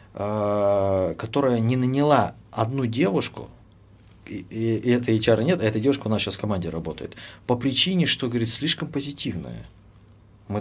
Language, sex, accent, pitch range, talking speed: Russian, male, native, 95-115 Hz, 155 wpm